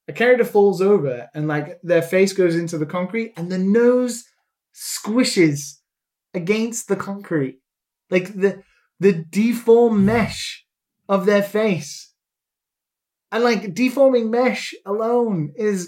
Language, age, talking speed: English, 20-39, 125 wpm